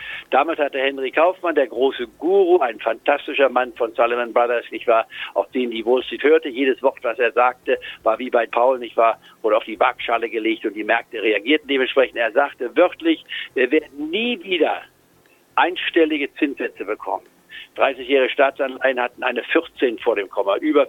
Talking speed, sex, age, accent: 175 wpm, male, 60-79, German